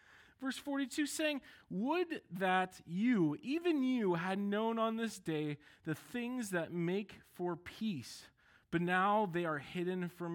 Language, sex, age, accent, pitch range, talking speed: English, male, 20-39, American, 155-230 Hz, 145 wpm